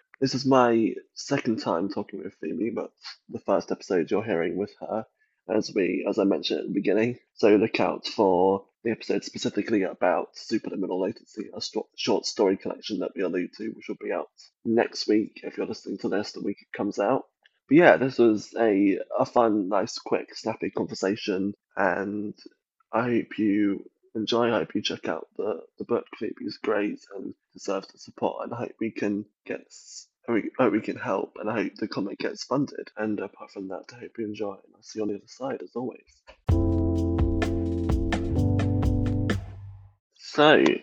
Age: 20-39